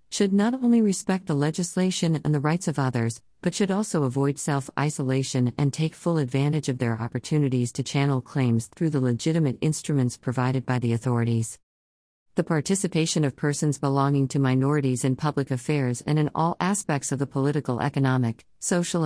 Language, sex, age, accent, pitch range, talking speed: English, female, 50-69, American, 130-155 Hz, 165 wpm